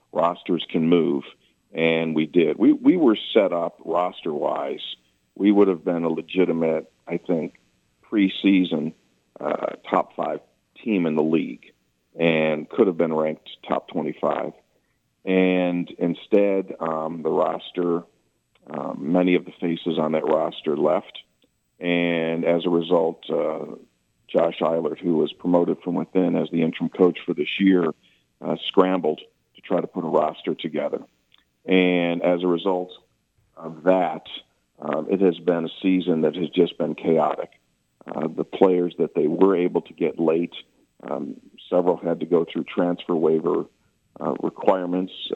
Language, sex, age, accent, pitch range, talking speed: English, male, 50-69, American, 80-95 Hz, 150 wpm